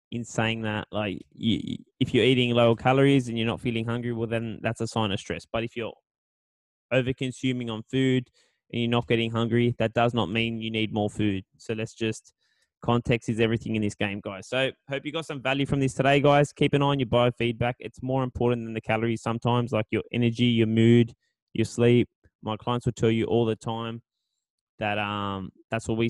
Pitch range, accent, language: 115-130 Hz, Australian, English